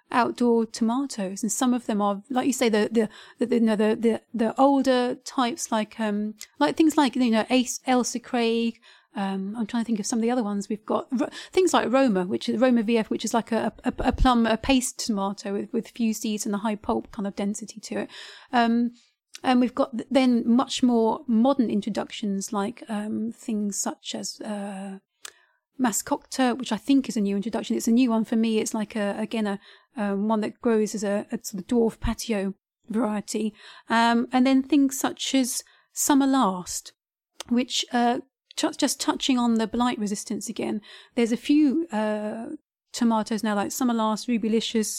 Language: English